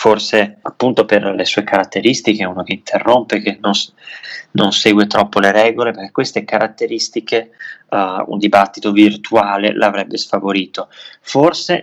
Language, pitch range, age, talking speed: Italian, 100-110 Hz, 20-39, 125 wpm